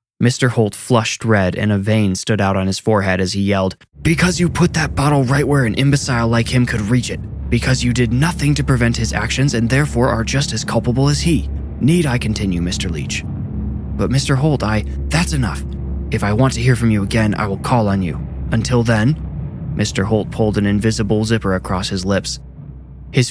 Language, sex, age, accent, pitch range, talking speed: English, male, 20-39, American, 100-130 Hz, 210 wpm